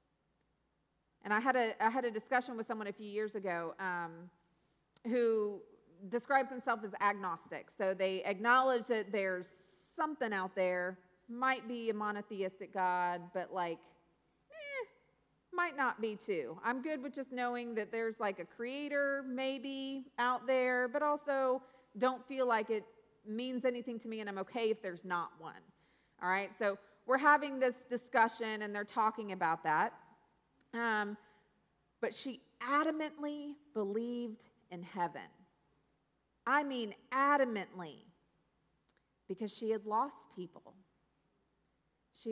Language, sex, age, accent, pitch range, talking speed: English, female, 30-49, American, 205-260 Hz, 140 wpm